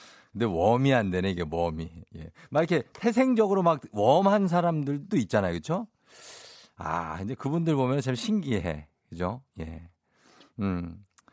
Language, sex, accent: Korean, male, native